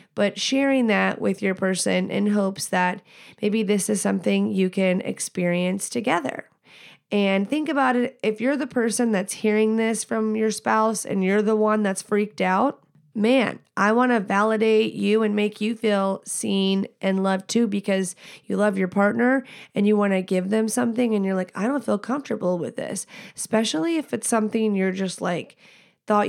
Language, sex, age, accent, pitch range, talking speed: English, female, 30-49, American, 185-220 Hz, 185 wpm